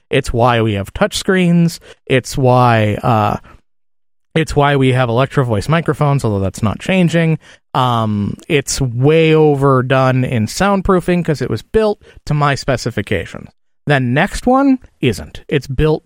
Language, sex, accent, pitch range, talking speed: English, male, American, 115-155 Hz, 145 wpm